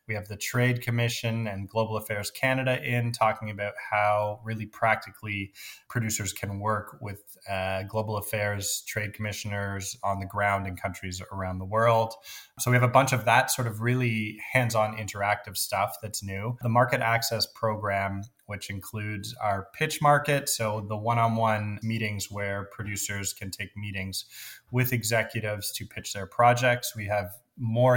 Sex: male